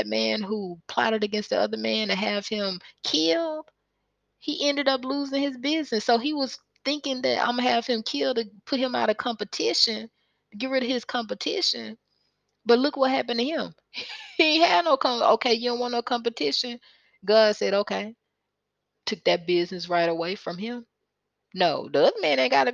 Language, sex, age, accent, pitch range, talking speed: English, female, 20-39, American, 185-255 Hz, 185 wpm